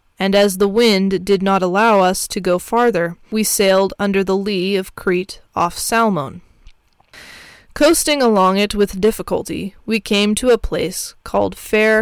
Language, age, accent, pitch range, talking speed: English, 20-39, American, 190-230 Hz, 160 wpm